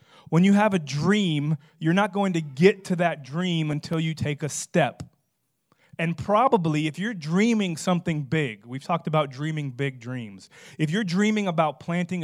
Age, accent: 30-49, American